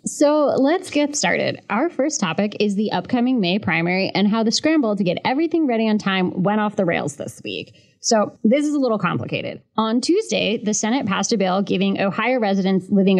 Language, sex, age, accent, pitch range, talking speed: English, female, 20-39, American, 190-260 Hz, 205 wpm